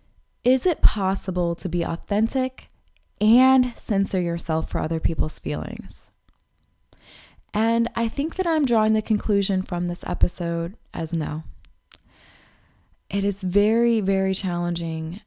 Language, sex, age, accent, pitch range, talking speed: English, female, 20-39, American, 165-210 Hz, 120 wpm